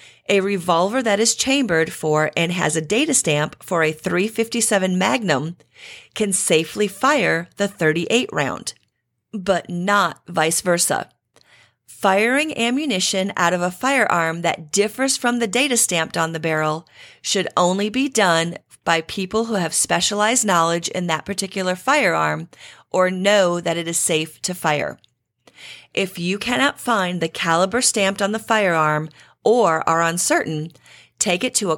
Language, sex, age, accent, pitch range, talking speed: English, female, 40-59, American, 165-220 Hz, 155 wpm